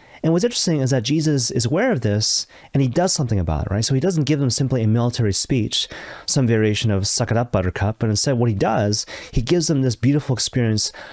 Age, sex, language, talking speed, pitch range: 30-49, male, English, 235 wpm, 105-145 Hz